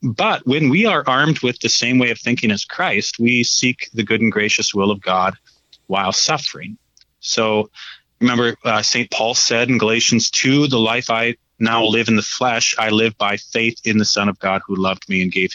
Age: 30-49